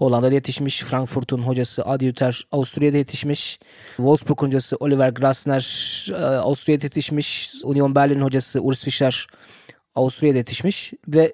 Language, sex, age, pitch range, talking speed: Turkish, male, 20-39, 130-155 Hz, 115 wpm